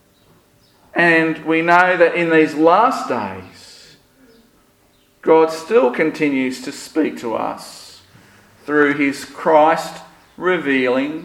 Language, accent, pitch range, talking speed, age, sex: English, Australian, 140-210 Hz, 95 wpm, 50-69, male